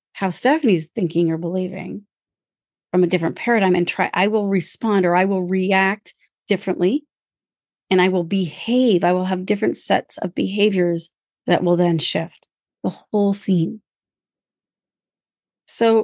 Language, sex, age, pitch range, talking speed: English, female, 30-49, 170-210 Hz, 140 wpm